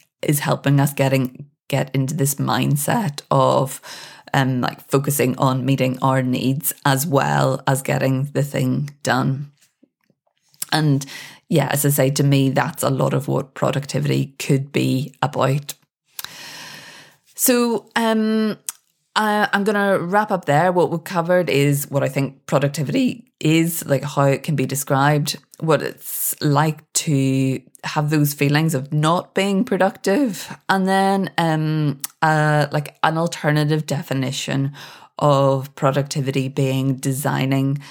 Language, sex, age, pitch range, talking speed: English, female, 20-39, 135-160 Hz, 135 wpm